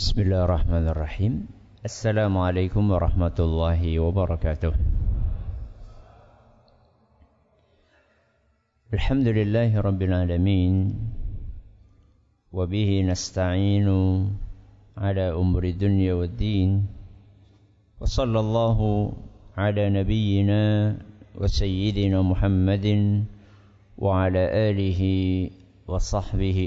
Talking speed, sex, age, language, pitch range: 65 wpm, male, 50-69, English, 95-105 Hz